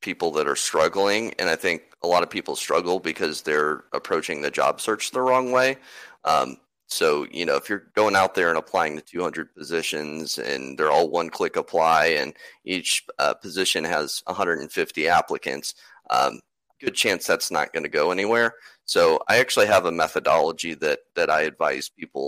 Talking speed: 185 wpm